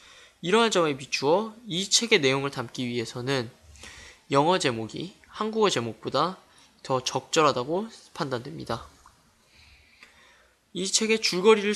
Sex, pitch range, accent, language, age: male, 125-200 Hz, native, Korean, 20-39